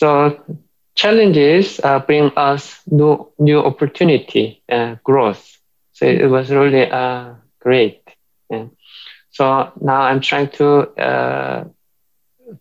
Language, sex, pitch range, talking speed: English, male, 130-145 Hz, 105 wpm